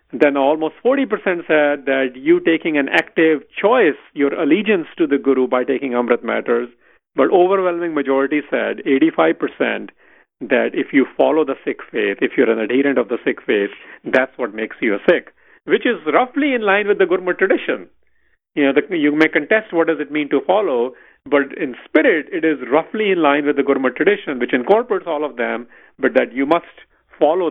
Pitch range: 135-170 Hz